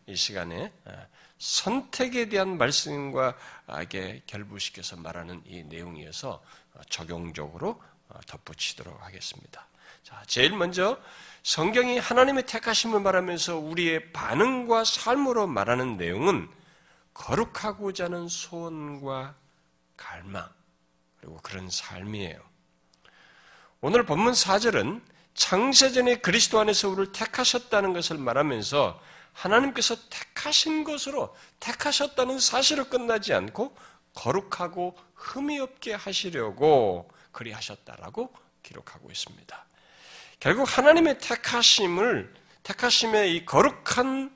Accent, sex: native, male